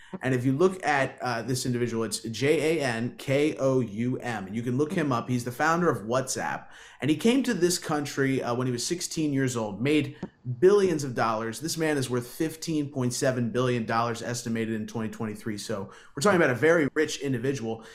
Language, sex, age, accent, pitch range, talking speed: English, male, 30-49, American, 120-155 Hz, 205 wpm